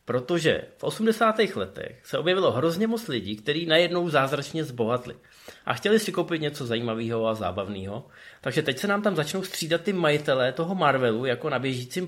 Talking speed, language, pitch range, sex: 175 wpm, Czech, 125-165 Hz, male